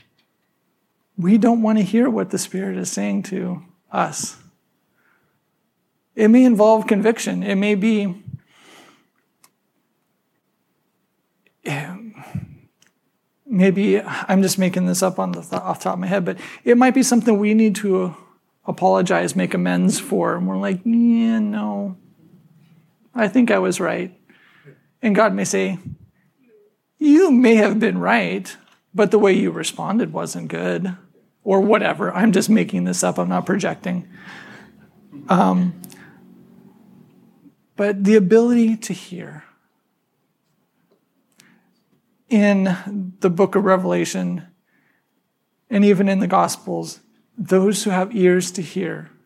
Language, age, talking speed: English, 40-59, 125 wpm